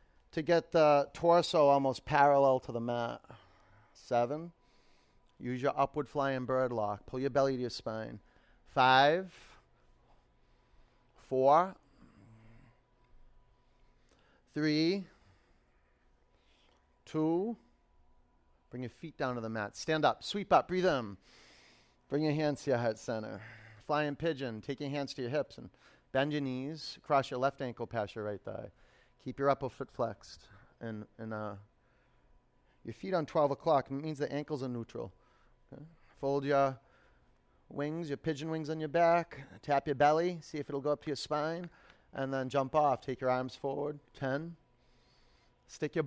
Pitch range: 115-150 Hz